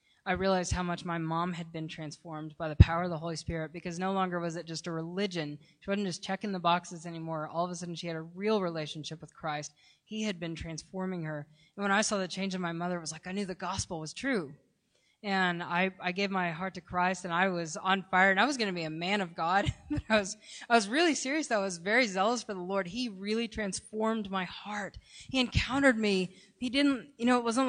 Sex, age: female, 20-39